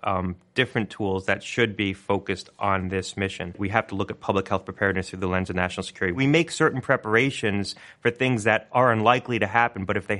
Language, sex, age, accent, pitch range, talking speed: English, male, 30-49, American, 100-120 Hz, 225 wpm